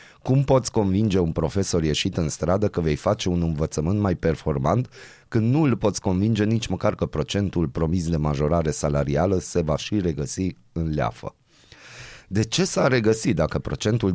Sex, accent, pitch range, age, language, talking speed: male, native, 85-105 Hz, 30-49, Romanian, 170 wpm